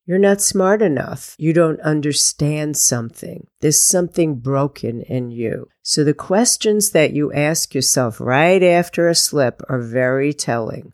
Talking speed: 150 wpm